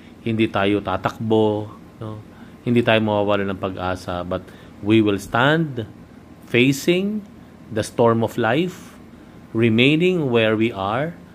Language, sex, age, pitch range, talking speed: Filipino, male, 50-69, 95-120 Hz, 115 wpm